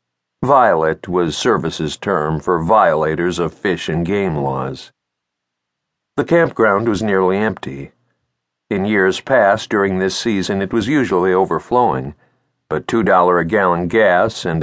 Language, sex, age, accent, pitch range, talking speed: English, male, 60-79, American, 75-110 Hz, 115 wpm